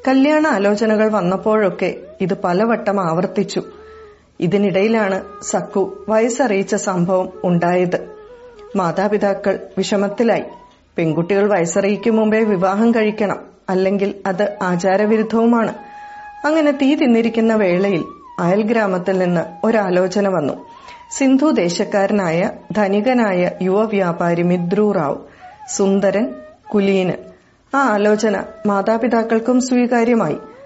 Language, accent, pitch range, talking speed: Malayalam, native, 195-235 Hz, 75 wpm